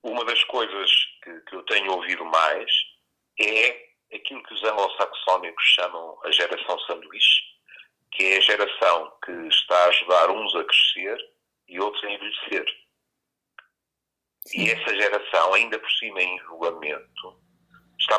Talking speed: 140 wpm